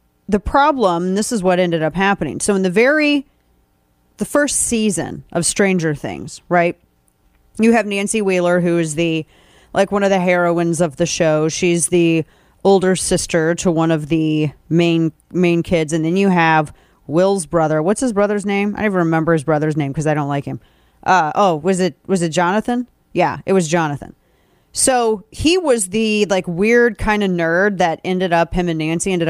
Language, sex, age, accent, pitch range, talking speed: English, female, 30-49, American, 160-205 Hz, 190 wpm